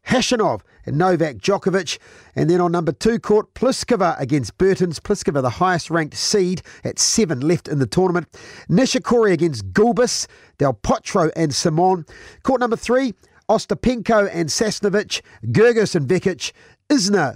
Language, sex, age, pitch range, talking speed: English, male, 40-59, 160-215 Hz, 140 wpm